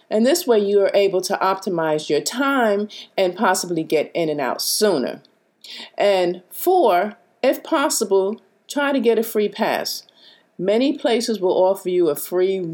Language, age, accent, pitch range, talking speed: English, 50-69, American, 180-230 Hz, 160 wpm